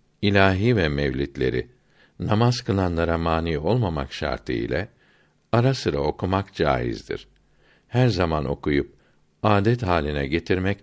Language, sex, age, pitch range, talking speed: Turkish, male, 60-79, 75-105 Hz, 105 wpm